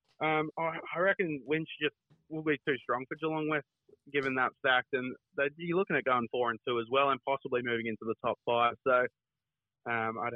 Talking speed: 205 wpm